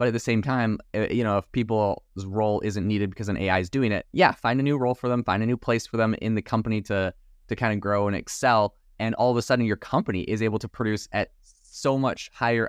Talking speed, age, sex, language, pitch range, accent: 265 wpm, 20-39, male, English, 100-120 Hz, American